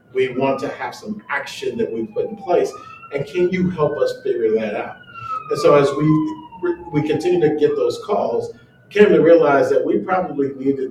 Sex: male